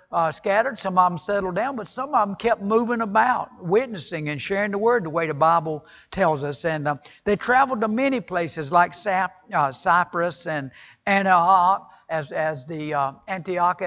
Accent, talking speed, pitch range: American, 185 wpm, 160-220 Hz